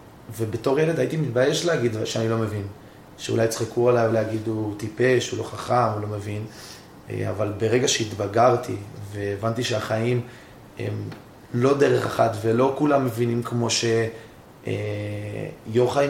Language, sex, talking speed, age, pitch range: Hebrew, male, 125 wpm, 20-39, 110-125 Hz